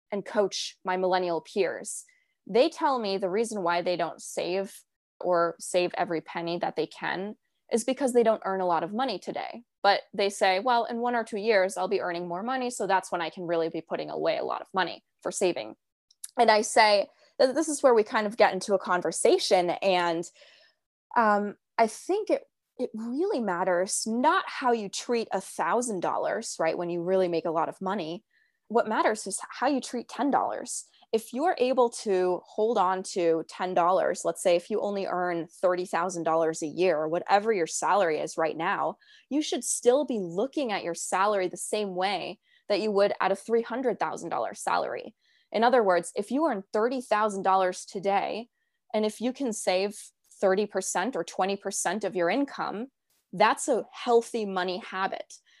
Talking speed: 180 wpm